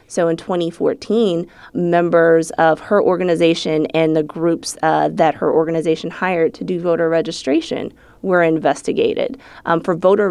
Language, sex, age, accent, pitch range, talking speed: English, female, 20-39, American, 155-175 Hz, 140 wpm